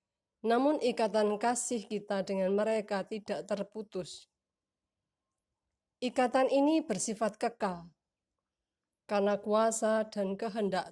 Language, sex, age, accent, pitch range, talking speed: Indonesian, female, 20-39, native, 190-225 Hz, 90 wpm